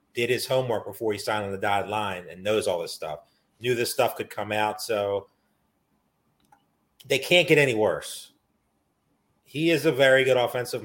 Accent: American